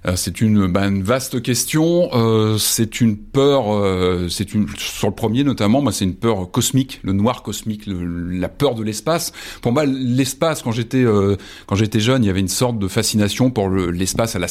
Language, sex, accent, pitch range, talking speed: French, male, French, 100-130 Hz, 210 wpm